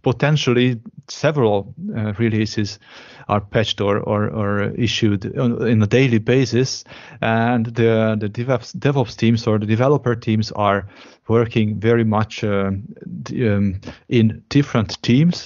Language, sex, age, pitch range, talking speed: English, male, 30-49, 110-130 Hz, 125 wpm